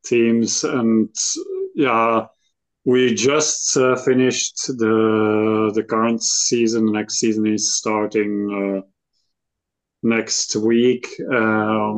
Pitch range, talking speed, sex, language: 105-115 Hz, 100 wpm, male, English